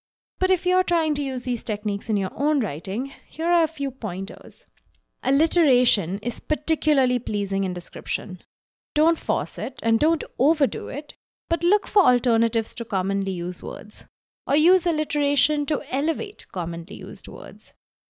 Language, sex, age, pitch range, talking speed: English, female, 20-39, 195-275 Hz, 155 wpm